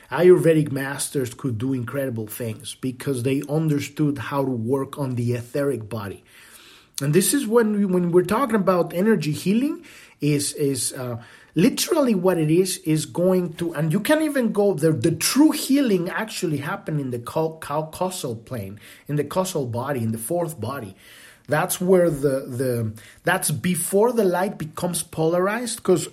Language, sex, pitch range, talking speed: English, male, 120-180 Hz, 170 wpm